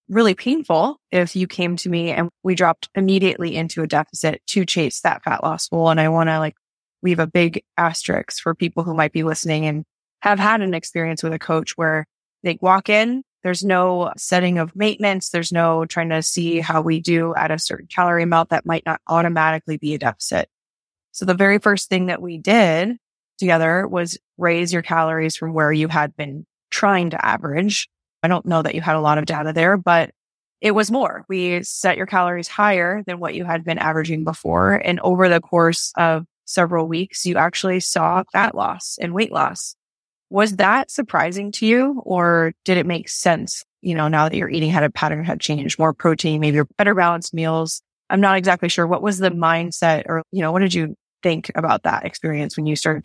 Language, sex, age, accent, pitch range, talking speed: English, female, 20-39, American, 160-185 Hz, 210 wpm